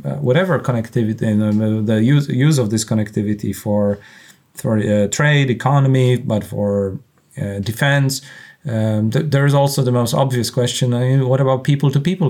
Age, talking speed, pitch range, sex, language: 30-49, 170 wpm, 110-135 Hz, male, English